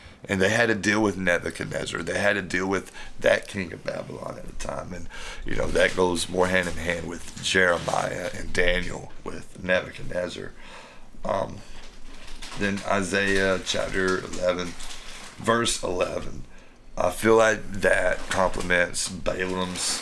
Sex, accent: male, American